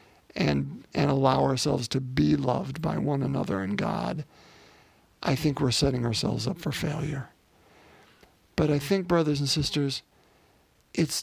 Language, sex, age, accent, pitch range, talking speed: English, male, 50-69, American, 130-155 Hz, 145 wpm